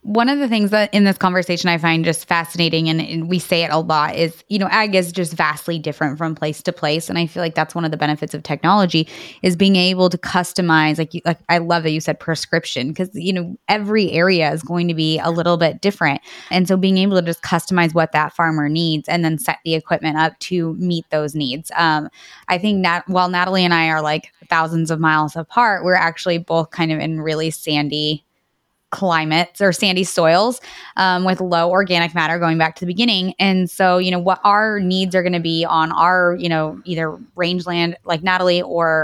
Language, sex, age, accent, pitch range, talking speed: English, female, 20-39, American, 160-185 Hz, 225 wpm